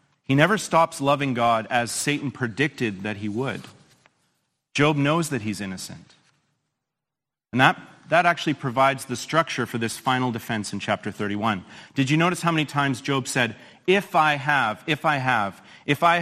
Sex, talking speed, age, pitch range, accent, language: male, 170 wpm, 40-59, 125-160 Hz, American, English